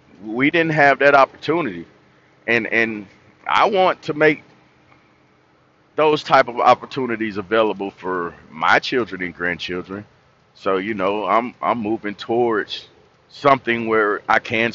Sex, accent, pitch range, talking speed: male, American, 100-140 Hz, 130 wpm